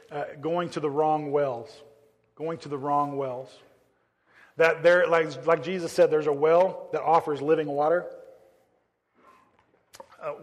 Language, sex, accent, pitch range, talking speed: English, male, American, 150-175 Hz, 145 wpm